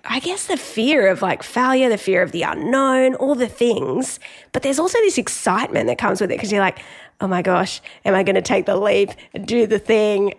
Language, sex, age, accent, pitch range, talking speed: English, female, 10-29, Australian, 195-255 Hz, 235 wpm